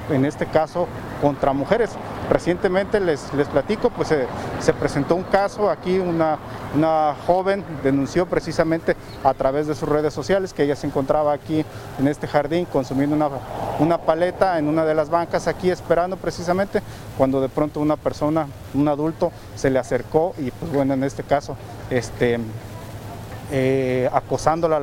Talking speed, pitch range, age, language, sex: 155 wpm, 135-165 Hz, 40-59, Spanish, male